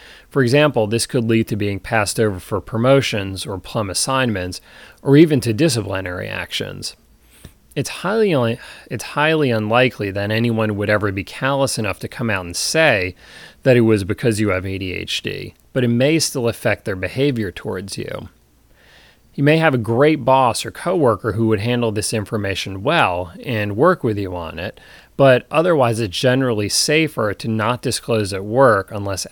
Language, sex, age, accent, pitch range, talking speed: English, male, 30-49, American, 100-130 Hz, 170 wpm